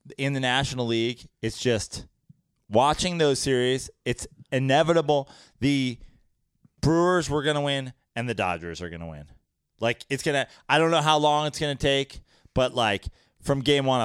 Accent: American